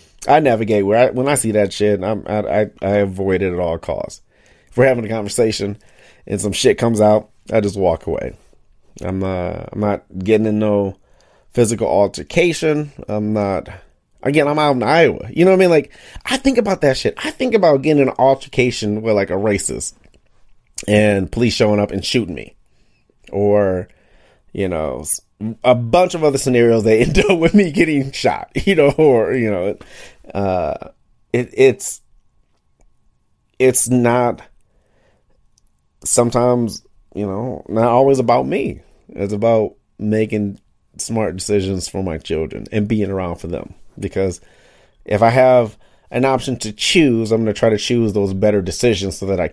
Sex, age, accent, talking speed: male, 30-49, American, 170 wpm